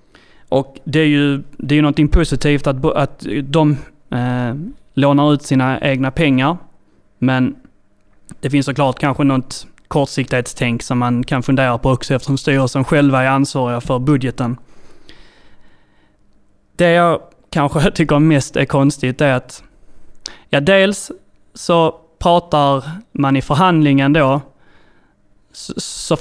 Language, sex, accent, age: Swedish, male, native, 20-39